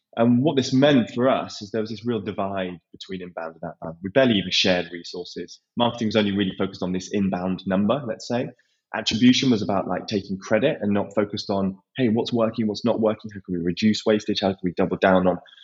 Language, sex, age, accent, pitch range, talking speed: English, male, 20-39, British, 95-115 Hz, 225 wpm